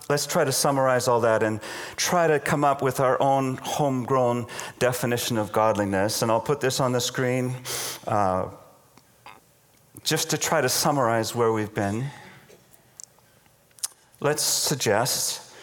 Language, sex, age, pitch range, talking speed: English, male, 40-59, 115-155 Hz, 140 wpm